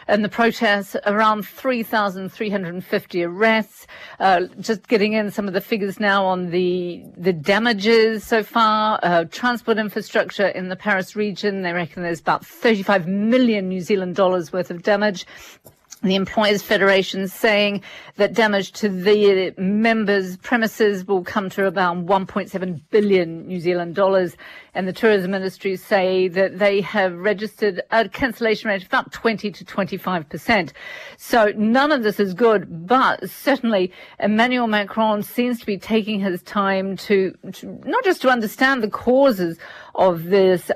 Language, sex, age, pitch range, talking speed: English, female, 50-69, 190-225 Hz, 150 wpm